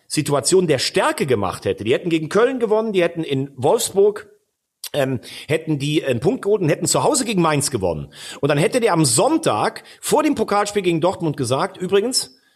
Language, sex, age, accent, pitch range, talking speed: German, male, 40-59, German, 145-195 Hz, 190 wpm